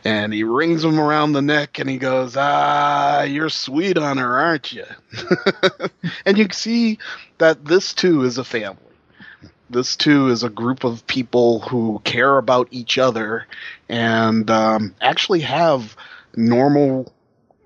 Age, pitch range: 30-49, 110-145 Hz